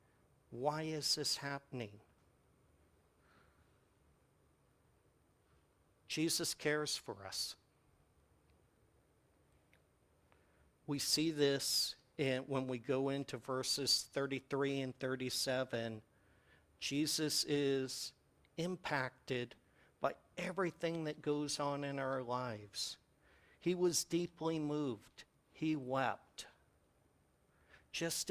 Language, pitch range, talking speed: English, 125-145 Hz, 80 wpm